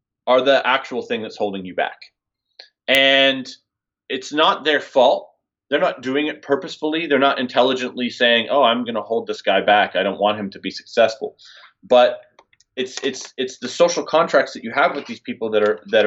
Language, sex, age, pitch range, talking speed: English, male, 30-49, 110-140 Hz, 195 wpm